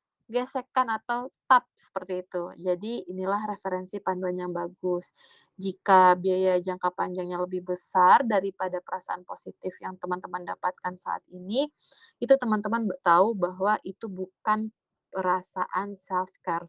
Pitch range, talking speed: 180-215 Hz, 120 wpm